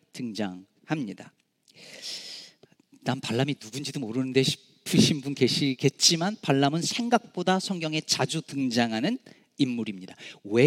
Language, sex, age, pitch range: Korean, male, 40-59, 130-195 Hz